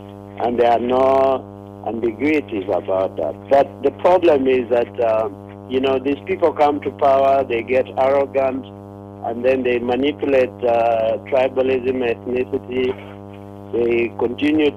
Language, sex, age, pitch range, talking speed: English, male, 50-69, 100-135 Hz, 130 wpm